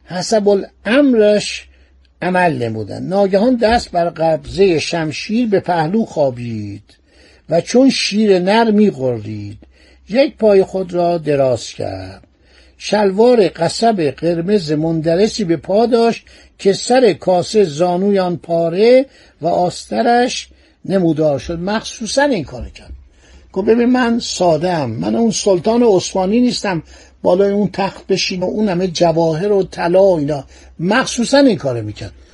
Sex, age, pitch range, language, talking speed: male, 60-79, 155-220 Hz, Persian, 125 wpm